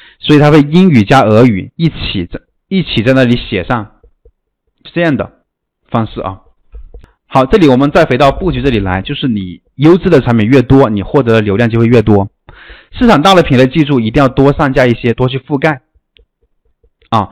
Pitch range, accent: 115-145 Hz, native